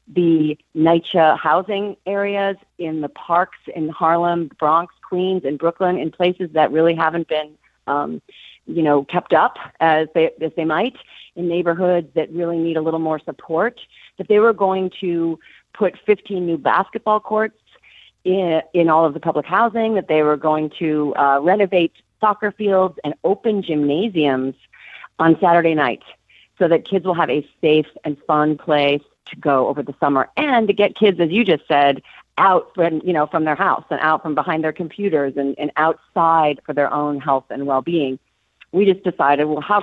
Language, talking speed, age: English, 180 wpm, 40-59